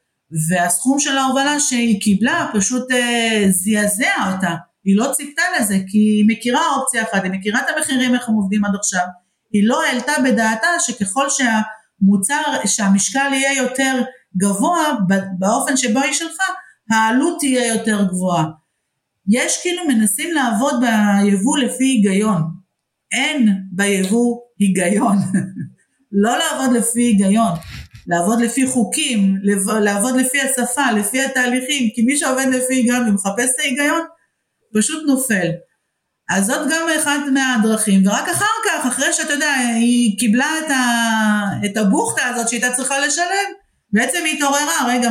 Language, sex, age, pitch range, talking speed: Hebrew, female, 50-69, 200-270 Hz, 135 wpm